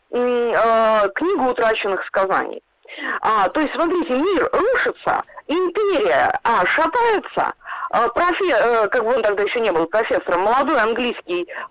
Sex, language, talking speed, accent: female, Russian, 105 wpm, native